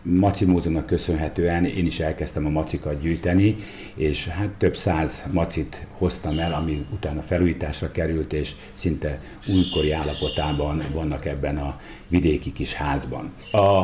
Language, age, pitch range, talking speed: Hungarian, 50-69, 80-100 Hz, 125 wpm